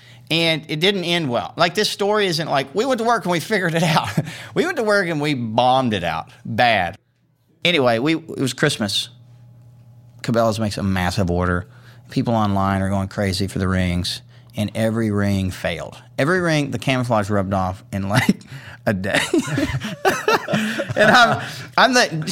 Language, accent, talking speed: English, American, 175 wpm